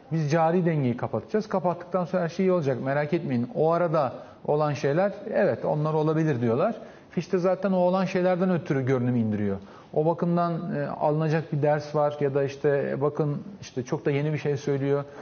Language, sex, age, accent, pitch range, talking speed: Turkish, male, 40-59, native, 130-170 Hz, 180 wpm